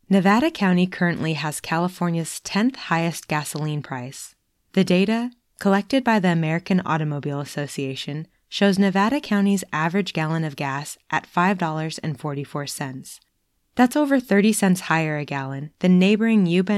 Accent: American